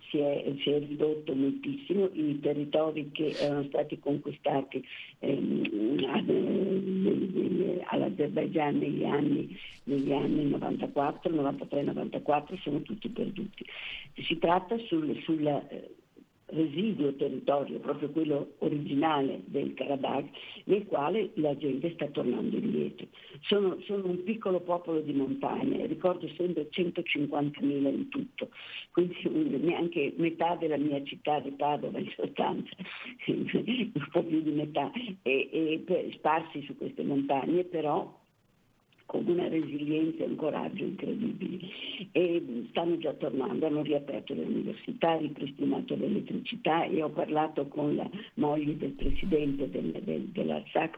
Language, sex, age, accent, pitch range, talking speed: Italian, female, 60-79, native, 145-185 Hz, 120 wpm